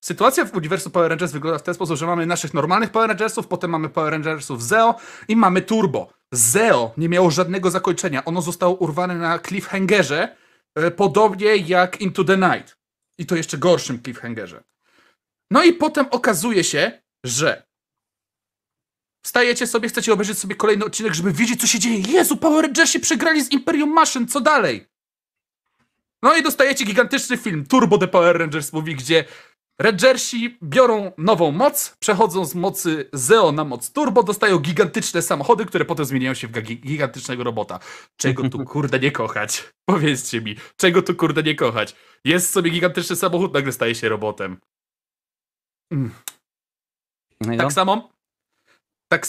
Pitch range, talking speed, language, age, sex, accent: 135-215 Hz, 155 wpm, Polish, 30-49, male, native